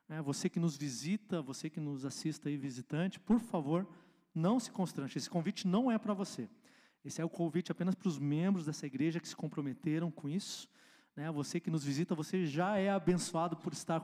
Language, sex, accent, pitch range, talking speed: Portuguese, male, Brazilian, 145-185 Hz, 205 wpm